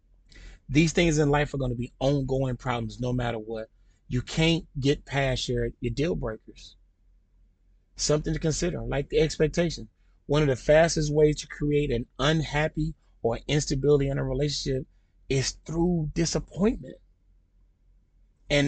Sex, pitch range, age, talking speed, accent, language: male, 105-165 Hz, 30-49, 145 wpm, American, English